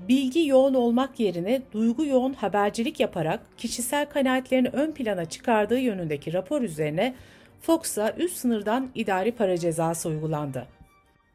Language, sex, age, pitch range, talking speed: Turkish, female, 60-79, 195-265 Hz, 120 wpm